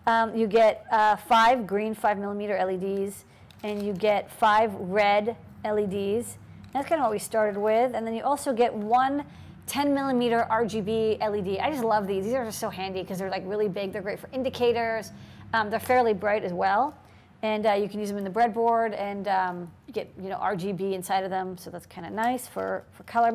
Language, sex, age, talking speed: English, female, 40-59, 210 wpm